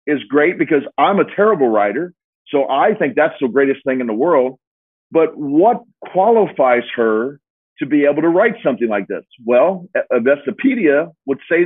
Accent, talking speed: American, 175 wpm